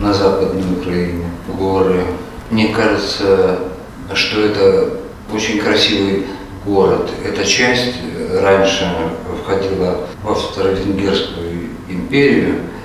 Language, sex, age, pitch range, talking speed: Russian, male, 50-69, 95-110 Hz, 85 wpm